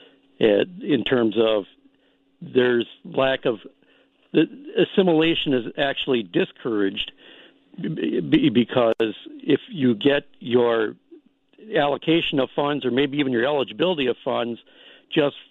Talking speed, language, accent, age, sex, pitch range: 100 wpm, English, American, 60-79, male, 110-145 Hz